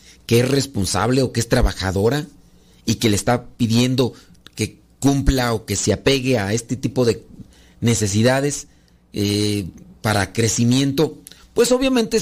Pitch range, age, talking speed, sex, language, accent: 105-160 Hz, 40-59, 140 wpm, male, Spanish, Mexican